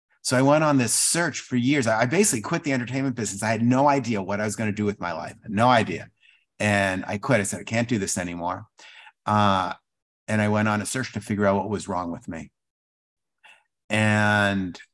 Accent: American